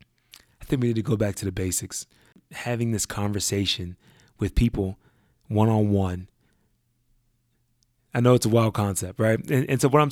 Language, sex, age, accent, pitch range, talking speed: English, male, 20-39, American, 105-125 Hz, 165 wpm